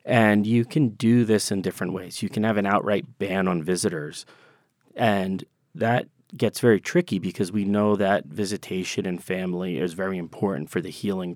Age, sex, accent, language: 30-49, male, American, English